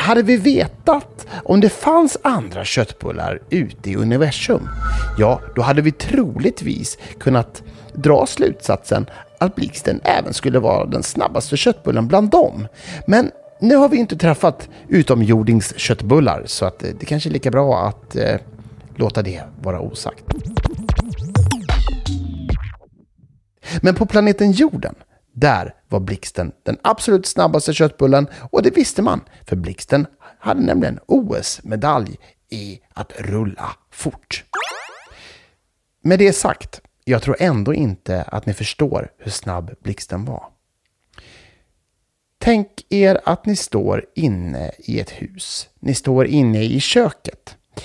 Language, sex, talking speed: Swedish, male, 125 wpm